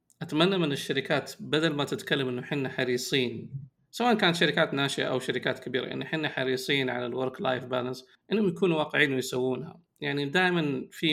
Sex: male